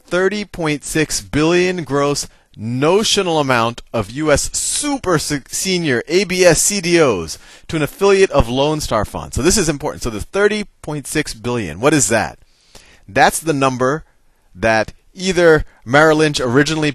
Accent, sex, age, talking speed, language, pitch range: American, male, 30-49, 125 wpm, English, 105-155 Hz